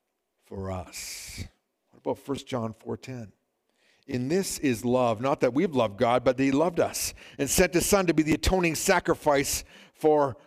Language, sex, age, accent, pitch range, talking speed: English, male, 50-69, American, 125-190 Hz, 180 wpm